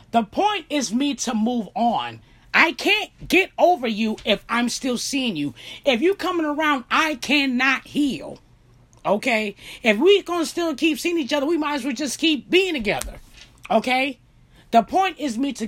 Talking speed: 185 wpm